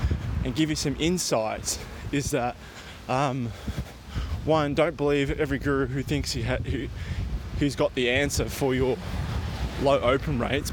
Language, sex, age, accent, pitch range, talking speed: English, male, 20-39, Australian, 100-145 Hz, 145 wpm